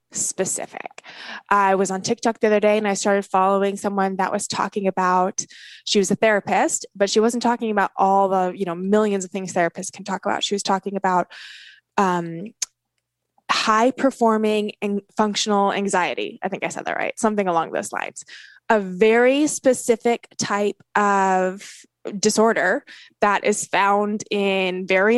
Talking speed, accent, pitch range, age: 160 wpm, American, 200-255 Hz, 20-39